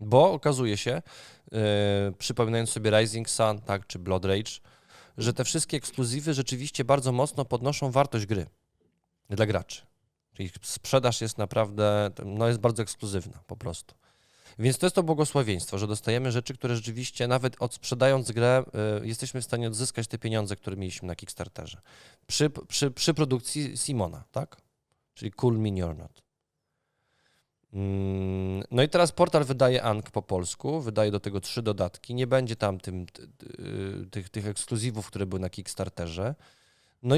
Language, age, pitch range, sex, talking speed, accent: Polish, 20-39, 105-140 Hz, male, 150 wpm, native